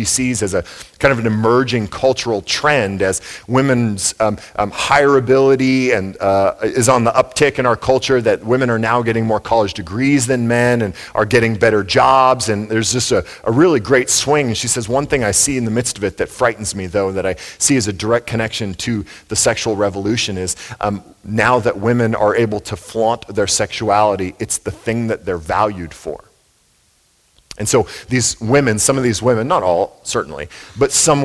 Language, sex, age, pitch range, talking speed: English, male, 40-59, 105-125 Hz, 200 wpm